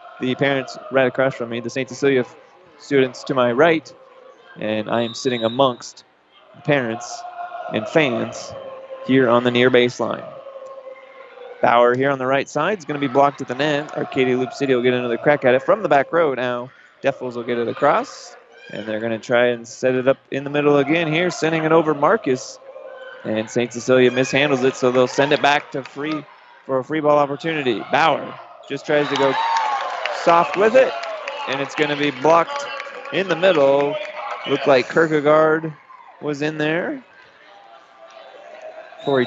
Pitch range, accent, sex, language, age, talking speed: 130-170 Hz, American, male, English, 20-39, 180 wpm